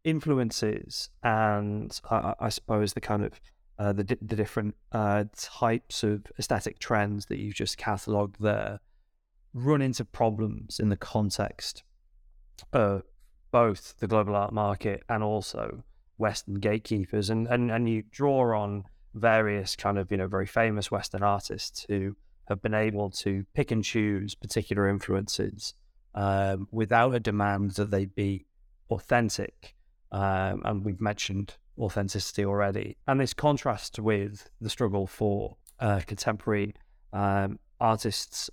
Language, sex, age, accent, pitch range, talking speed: English, male, 20-39, British, 100-115 Hz, 140 wpm